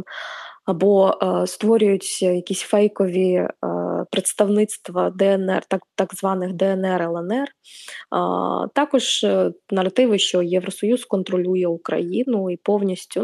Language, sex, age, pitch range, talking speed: Ukrainian, female, 20-39, 180-220 Hz, 105 wpm